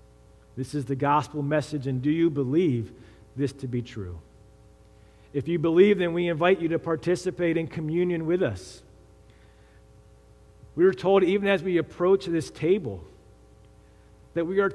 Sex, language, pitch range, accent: male, English, 120-170 Hz, American